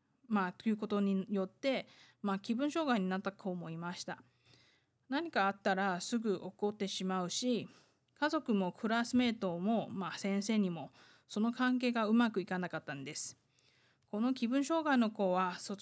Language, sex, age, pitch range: Japanese, female, 20-39, 185-230 Hz